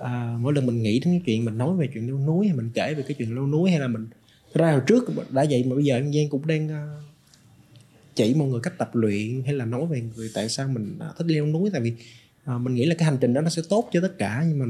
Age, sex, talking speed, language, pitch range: 20-39, male, 305 wpm, Vietnamese, 120-150 Hz